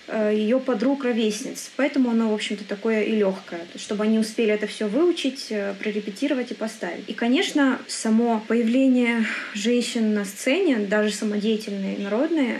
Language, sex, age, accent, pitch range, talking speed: Russian, female, 20-39, native, 210-250 Hz, 140 wpm